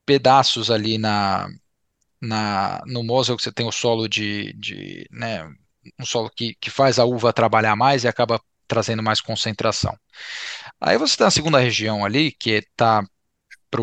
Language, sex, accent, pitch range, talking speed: Portuguese, male, Brazilian, 115-135 Hz, 165 wpm